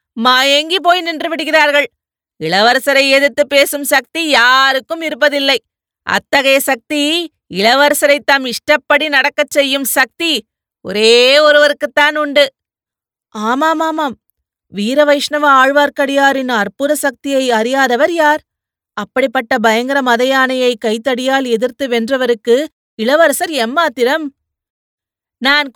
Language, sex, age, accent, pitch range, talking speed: Tamil, female, 30-49, native, 245-300 Hz, 90 wpm